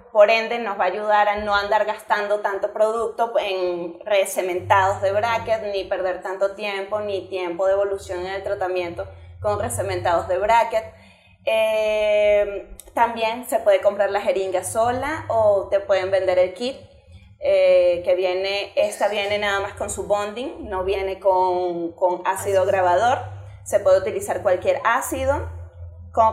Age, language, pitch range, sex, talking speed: 20-39, Spanish, 190-235 Hz, female, 155 wpm